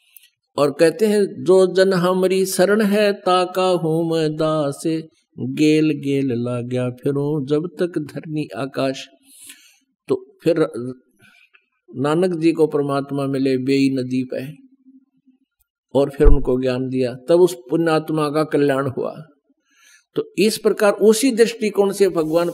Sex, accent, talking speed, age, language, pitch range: male, native, 125 wpm, 50-69, Hindi, 150-200 Hz